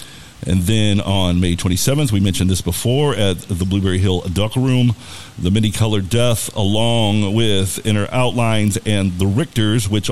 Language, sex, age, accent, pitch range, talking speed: English, male, 50-69, American, 95-120 Hz, 160 wpm